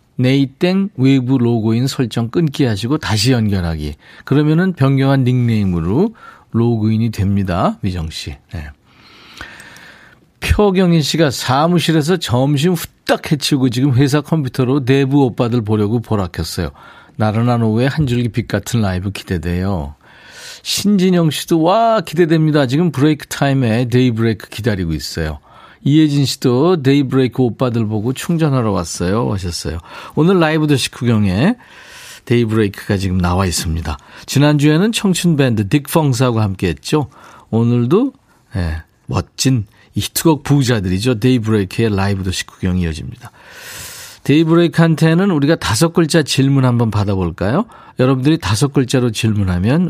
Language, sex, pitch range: Korean, male, 105-150 Hz